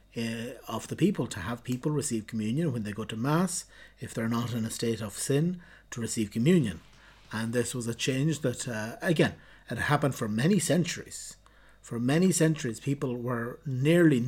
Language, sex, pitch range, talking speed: English, male, 120-155 Hz, 180 wpm